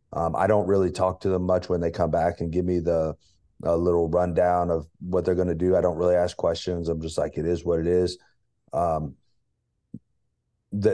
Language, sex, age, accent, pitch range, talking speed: English, male, 30-49, American, 85-95 Hz, 220 wpm